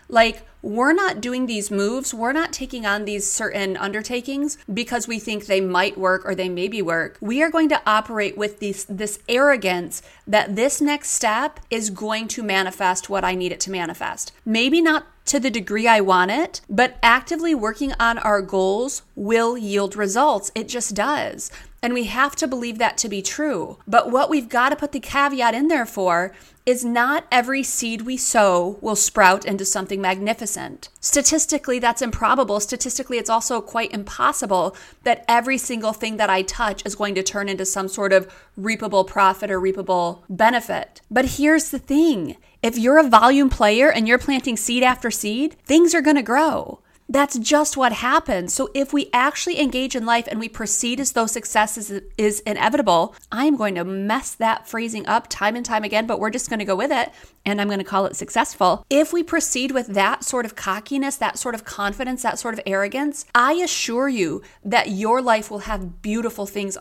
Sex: female